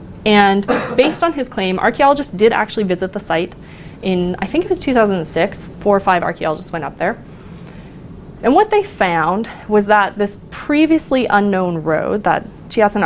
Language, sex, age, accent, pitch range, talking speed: English, female, 20-39, American, 180-235 Hz, 165 wpm